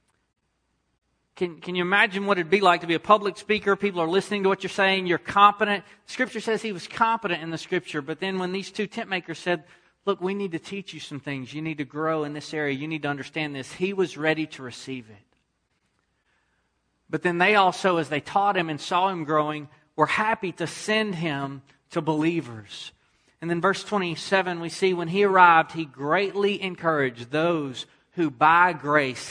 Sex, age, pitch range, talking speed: male, 40-59, 140-180 Hz, 205 wpm